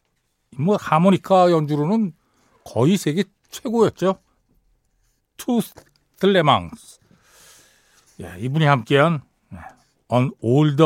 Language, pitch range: Korean, 120-180 Hz